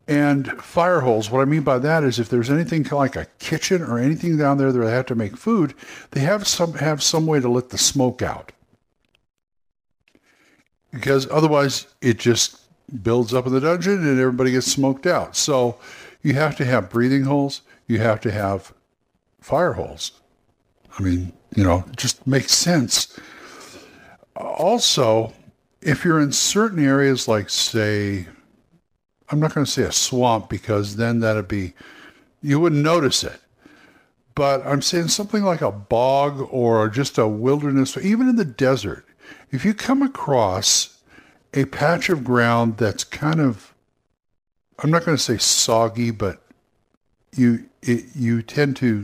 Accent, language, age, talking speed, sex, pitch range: American, English, 60-79, 160 wpm, male, 115-150 Hz